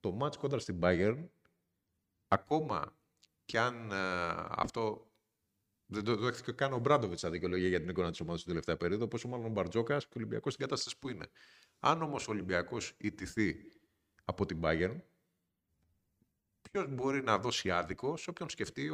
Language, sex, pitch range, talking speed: Greek, male, 90-120 Hz, 160 wpm